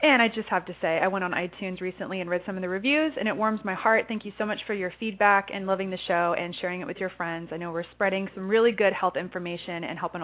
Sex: female